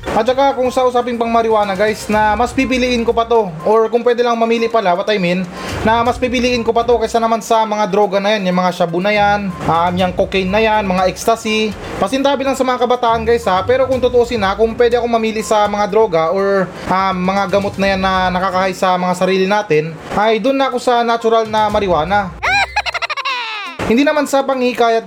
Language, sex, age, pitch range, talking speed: Filipino, male, 20-39, 205-245 Hz, 215 wpm